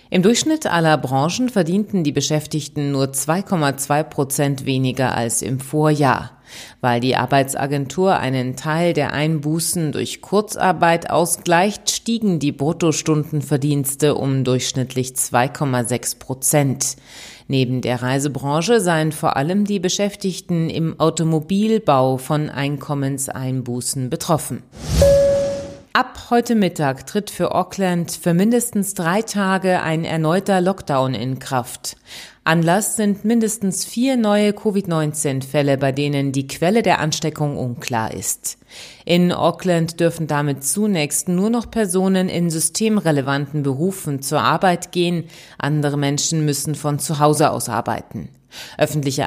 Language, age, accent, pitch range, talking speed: German, 30-49, German, 135-185 Hz, 115 wpm